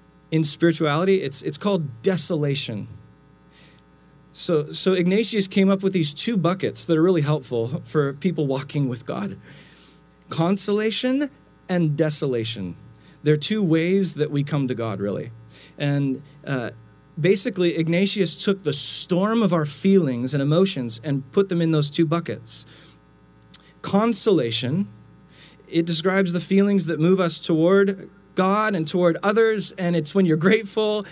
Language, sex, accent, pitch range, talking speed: English, male, American, 135-190 Hz, 145 wpm